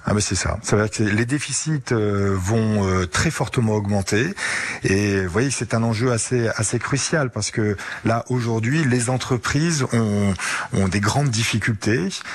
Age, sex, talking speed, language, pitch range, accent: 40-59, male, 170 wpm, French, 95-125 Hz, French